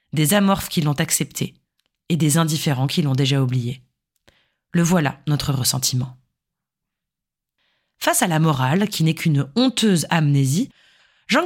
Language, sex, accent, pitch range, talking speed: French, female, French, 140-190 Hz, 135 wpm